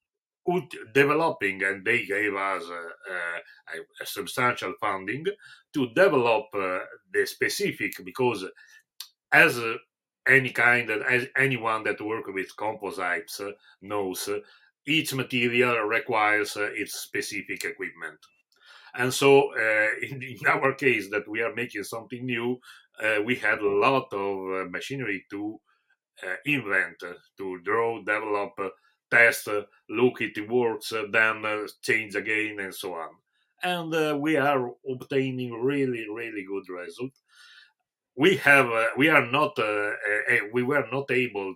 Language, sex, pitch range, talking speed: German, male, 105-140 Hz, 145 wpm